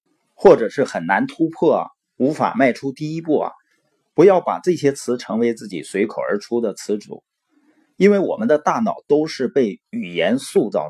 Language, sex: Chinese, male